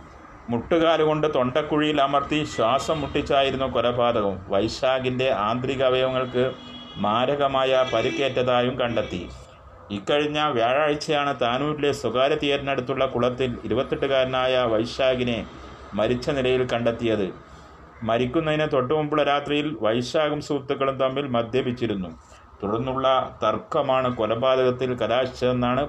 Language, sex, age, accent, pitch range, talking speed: Malayalam, male, 30-49, native, 115-140 Hz, 80 wpm